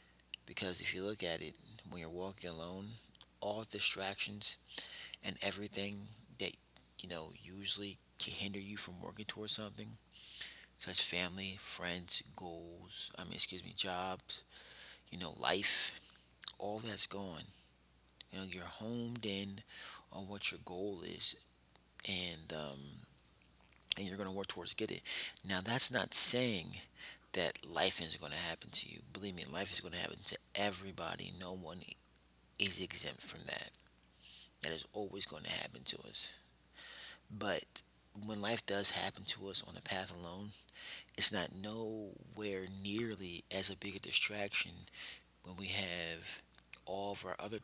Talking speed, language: 155 wpm, English